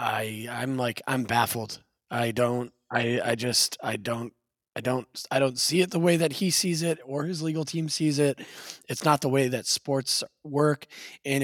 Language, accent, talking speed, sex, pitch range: English, American, 200 wpm, male, 120-155 Hz